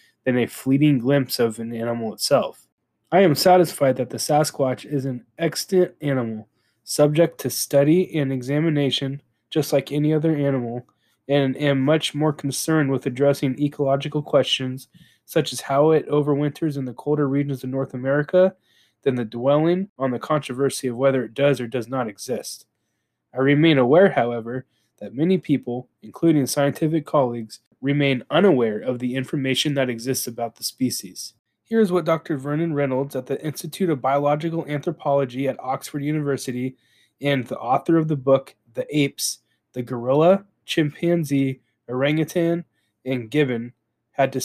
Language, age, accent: English, 20-39, American